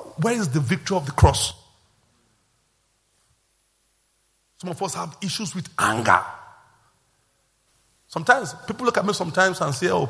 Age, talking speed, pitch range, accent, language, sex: 50-69, 135 wpm, 120-160 Hz, Nigerian, English, male